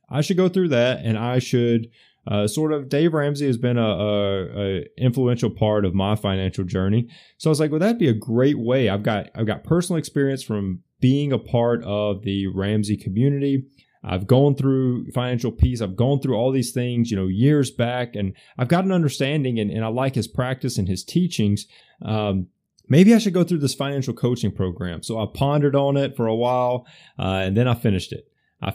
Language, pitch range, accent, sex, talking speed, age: English, 105-135 Hz, American, male, 210 wpm, 20-39